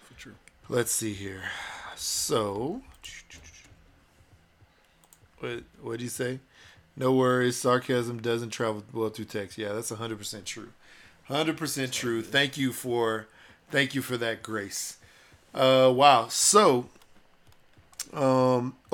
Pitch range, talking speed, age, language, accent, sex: 115-135 Hz, 120 wpm, 40-59, English, American, male